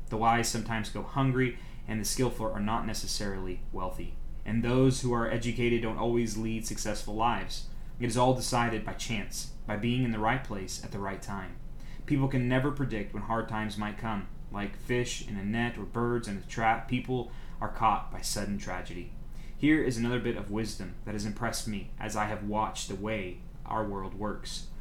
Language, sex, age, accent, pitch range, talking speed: English, male, 20-39, American, 100-120 Hz, 200 wpm